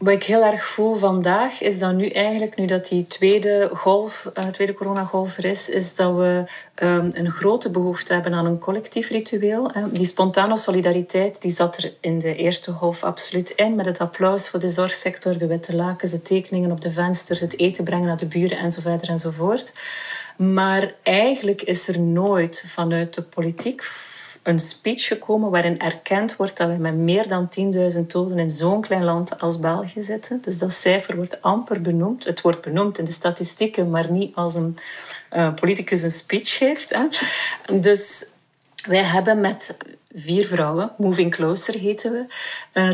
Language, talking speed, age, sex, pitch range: Dutch, 175 wpm, 30-49, female, 175-205 Hz